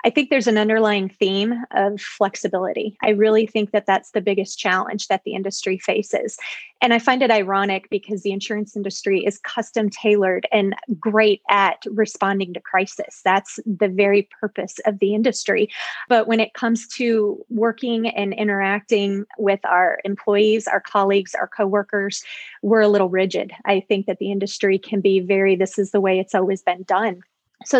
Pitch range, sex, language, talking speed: 195-225 Hz, female, English, 175 wpm